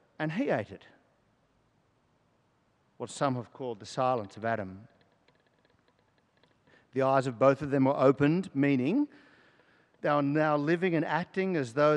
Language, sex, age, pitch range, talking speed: English, male, 50-69, 125-165 Hz, 145 wpm